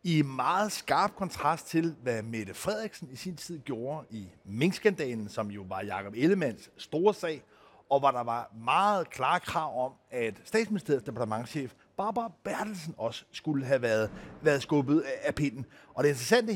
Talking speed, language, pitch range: 165 wpm, Danish, 130-190 Hz